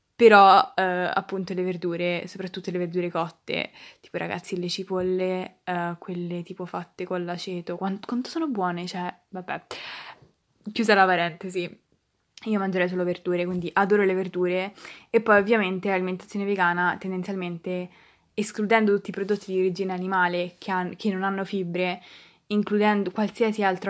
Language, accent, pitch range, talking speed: Italian, native, 180-195 Hz, 145 wpm